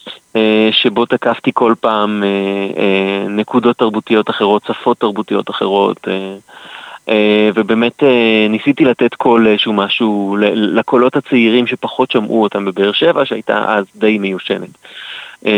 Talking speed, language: 130 wpm, Hebrew